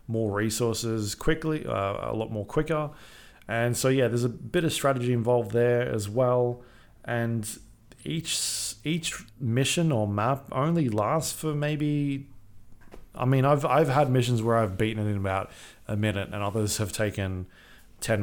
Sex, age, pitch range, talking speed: male, 20-39, 105-125 Hz, 160 wpm